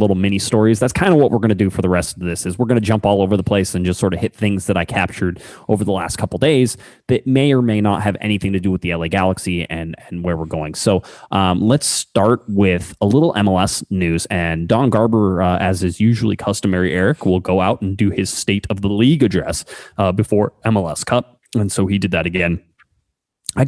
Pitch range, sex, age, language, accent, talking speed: 90-110 Hz, male, 20-39, English, American, 245 wpm